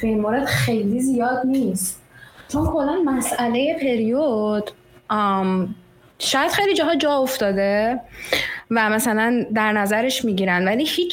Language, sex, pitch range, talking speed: Persian, female, 215-285 Hz, 120 wpm